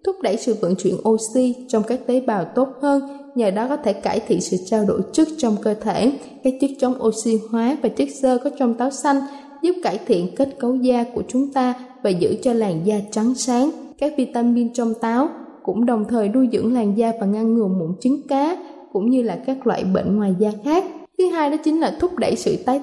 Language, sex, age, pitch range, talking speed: Vietnamese, female, 20-39, 225-280 Hz, 230 wpm